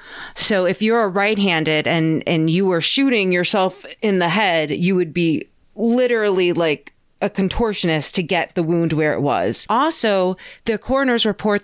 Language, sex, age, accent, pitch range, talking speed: English, female, 30-49, American, 165-215 Hz, 165 wpm